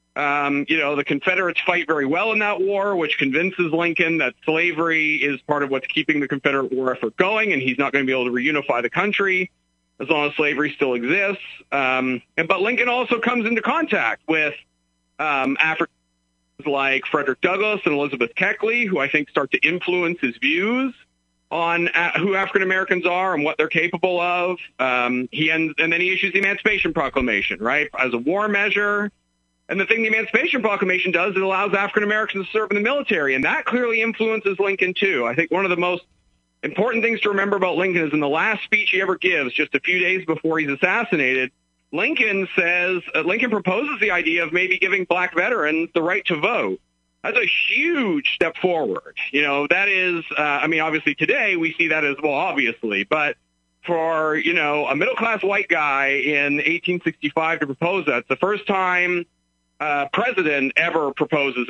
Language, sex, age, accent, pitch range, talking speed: English, male, 50-69, American, 145-195 Hz, 195 wpm